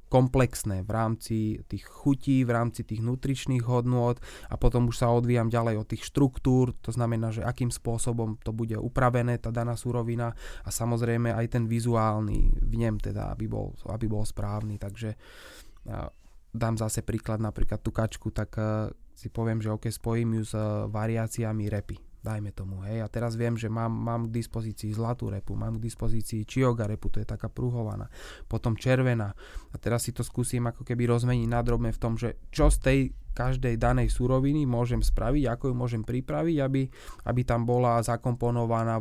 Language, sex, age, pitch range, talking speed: Slovak, male, 20-39, 110-120 Hz, 170 wpm